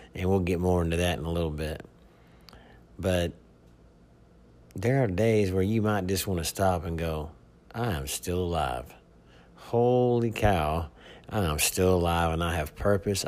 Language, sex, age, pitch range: English, male, 50-69, 80-95 Hz